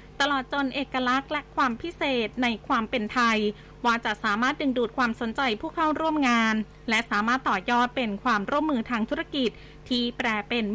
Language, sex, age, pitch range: Thai, female, 20-39, 225-275 Hz